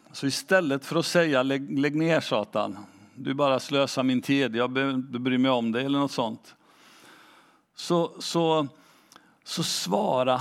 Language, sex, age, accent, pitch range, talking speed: Swedish, male, 50-69, native, 130-170 Hz, 150 wpm